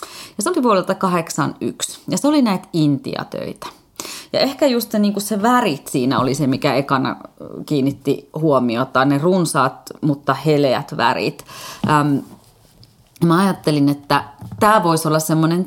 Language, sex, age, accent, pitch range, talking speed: Finnish, female, 30-49, native, 140-185 Hz, 140 wpm